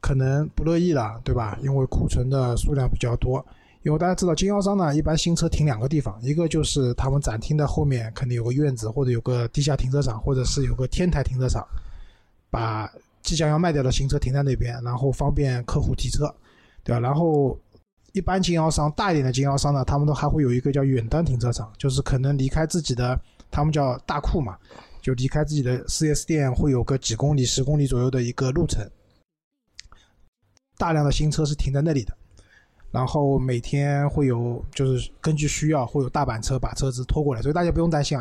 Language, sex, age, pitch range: Chinese, male, 20-39, 125-150 Hz